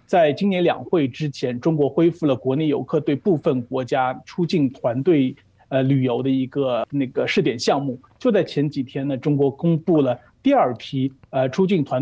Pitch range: 130-165 Hz